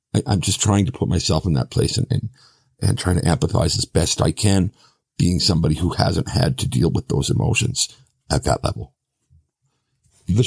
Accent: American